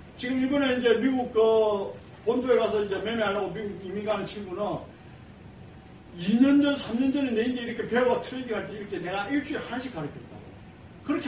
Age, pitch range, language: 40-59, 160-240 Hz, Korean